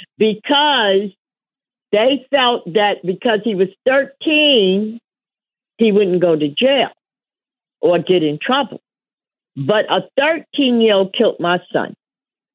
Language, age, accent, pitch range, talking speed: English, 50-69, American, 185-255 Hz, 110 wpm